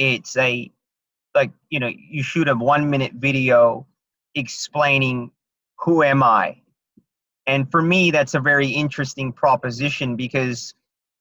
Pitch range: 130-150 Hz